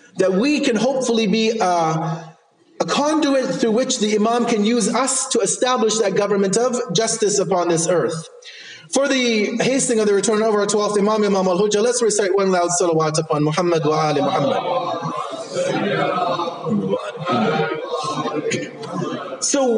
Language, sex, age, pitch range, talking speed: English, male, 30-49, 200-250 Hz, 140 wpm